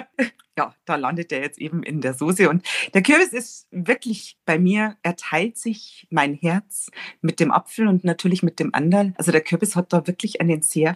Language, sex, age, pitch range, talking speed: German, female, 40-59, 165-205 Hz, 195 wpm